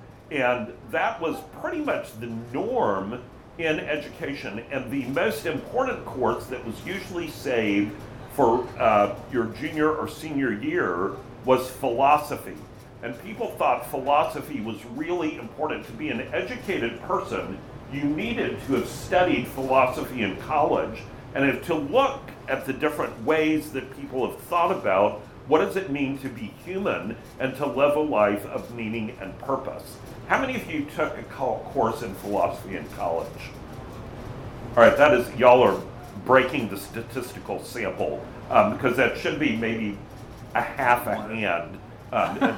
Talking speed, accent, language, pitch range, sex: 150 wpm, American, English, 110-140 Hz, male